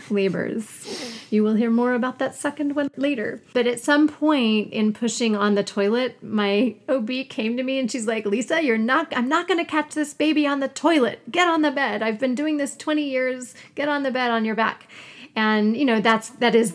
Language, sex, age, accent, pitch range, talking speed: English, female, 30-49, American, 195-245 Hz, 220 wpm